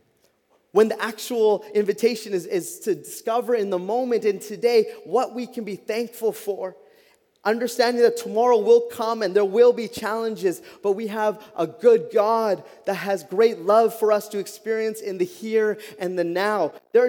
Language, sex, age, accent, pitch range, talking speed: English, male, 20-39, American, 210-245 Hz, 175 wpm